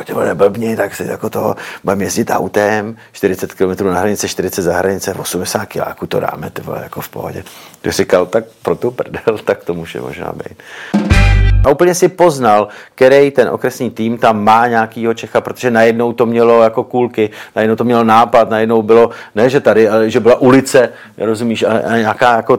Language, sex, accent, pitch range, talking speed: Czech, male, native, 110-130 Hz, 185 wpm